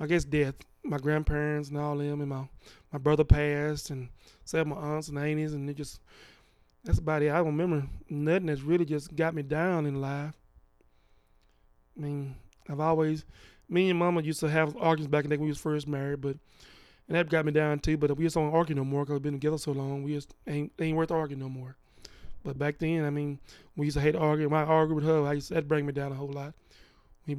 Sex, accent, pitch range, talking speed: male, American, 140-160 Hz, 240 wpm